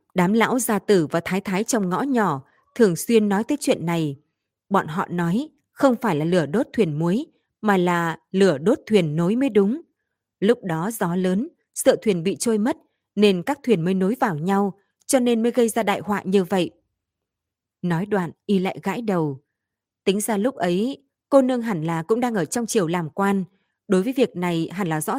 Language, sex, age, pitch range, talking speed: Vietnamese, female, 20-39, 165-220 Hz, 205 wpm